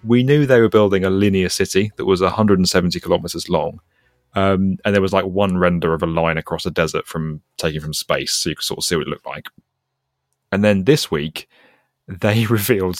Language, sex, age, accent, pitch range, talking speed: English, male, 30-49, British, 90-125 Hz, 210 wpm